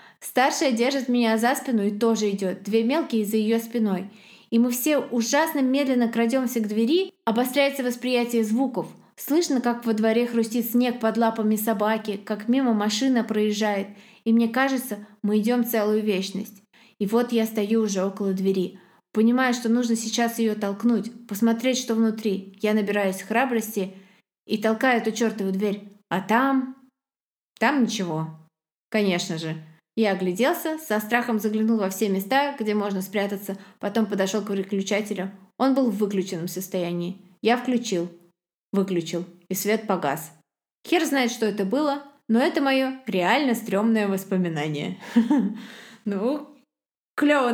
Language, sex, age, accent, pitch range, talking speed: Russian, female, 20-39, native, 200-245 Hz, 145 wpm